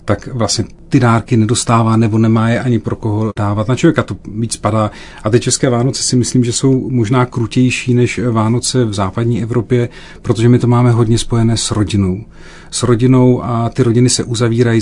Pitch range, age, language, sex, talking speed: 100-115 Hz, 40-59, Czech, male, 190 wpm